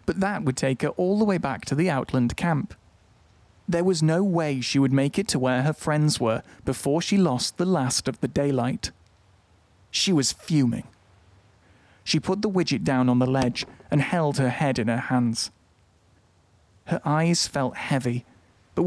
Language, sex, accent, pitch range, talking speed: English, male, British, 110-155 Hz, 180 wpm